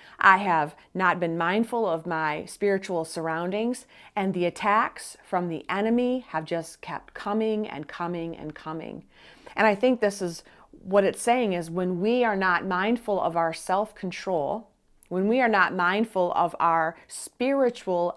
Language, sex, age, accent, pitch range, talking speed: English, female, 40-59, American, 170-210 Hz, 160 wpm